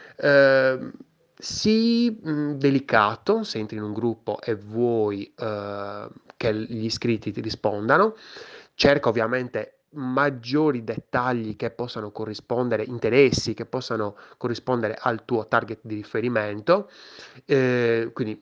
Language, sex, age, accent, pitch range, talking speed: Italian, male, 20-39, native, 105-125 Hz, 100 wpm